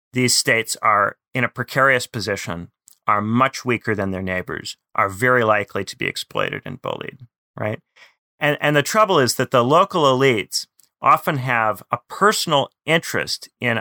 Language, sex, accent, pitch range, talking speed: English, male, American, 105-135 Hz, 160 wpm